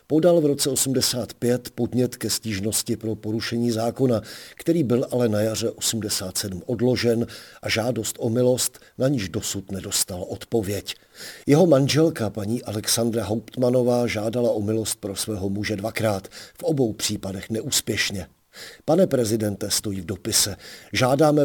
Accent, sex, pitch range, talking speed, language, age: native, male, 100-120 Hz, 135 wpm, Czech, 50-69